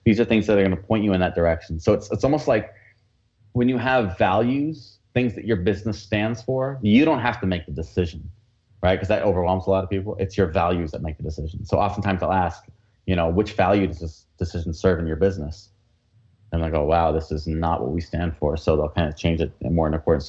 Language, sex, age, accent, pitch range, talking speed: English, male, 30-49, American, 90-110 Hz, 250 wpm